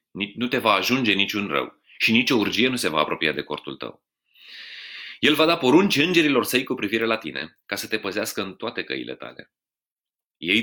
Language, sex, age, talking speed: Romanian, male, 30-49, 205 wpm